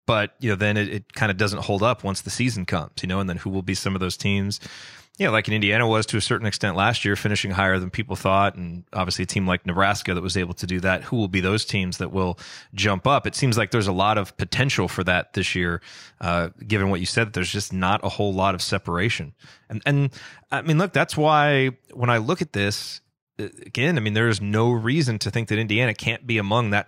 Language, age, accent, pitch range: English, 30-49, American, 100-125 Hz